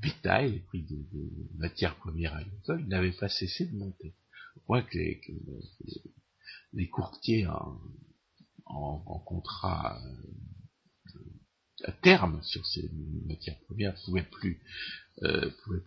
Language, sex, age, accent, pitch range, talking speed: French, male, 60-79, French, 85-105 Hz, 120 wpm